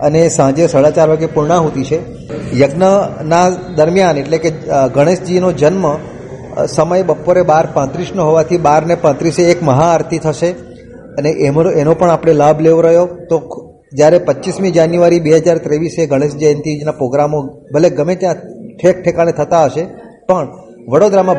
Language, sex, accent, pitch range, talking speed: Gujarati, male, native, 150-175 Hz, 140 wpm